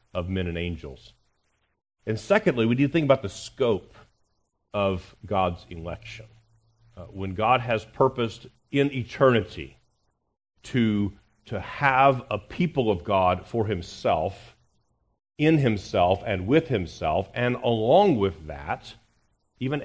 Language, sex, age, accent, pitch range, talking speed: English, male, 40-59, American, 95-120 Hz, 125 wpm